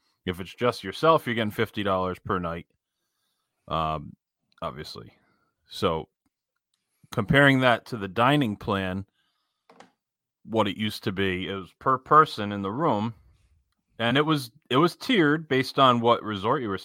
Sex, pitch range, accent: male, 95-120 Hz, American